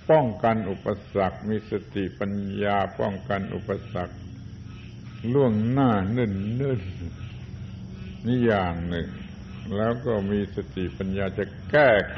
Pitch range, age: 95-115 Hz, 60-79